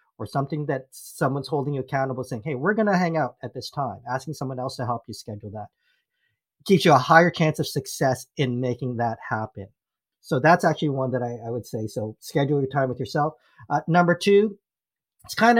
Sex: male